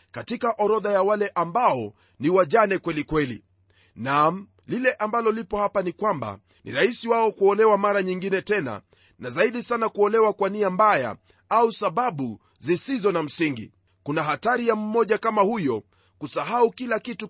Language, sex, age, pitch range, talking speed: Swahili, male, 40-59, 135-225 Hz, 155 wpm